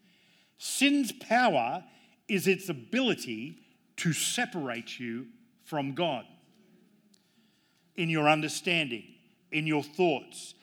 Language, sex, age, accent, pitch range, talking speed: English, male, 50-69, Australian, 165-230 Hz, 90 wpm